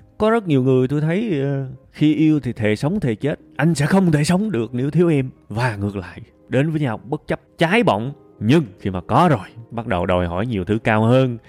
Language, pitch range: Vietnamese, 105-150 Hz